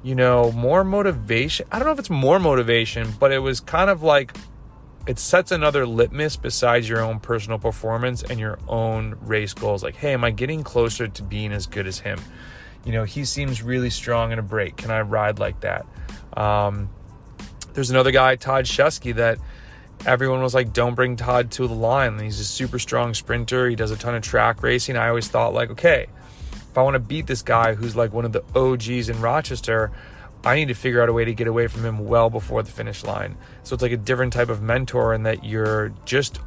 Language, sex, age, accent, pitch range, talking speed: English, male, 30-49, American, 110-130 Hz, 220 wpm